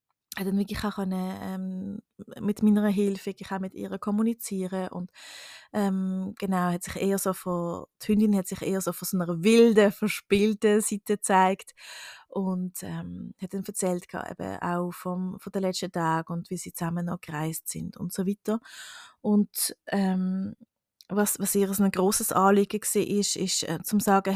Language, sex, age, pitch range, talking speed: German, female, 20-39, 185-220 Hz, 165 wpm